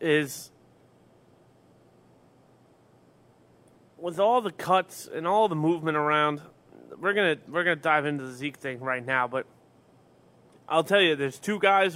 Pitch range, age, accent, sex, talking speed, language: 145-220 Hz, 30-49, American, male, 140 wpm, English